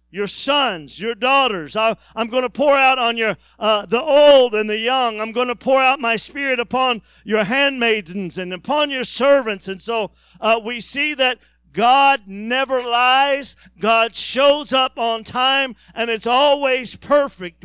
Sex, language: male, English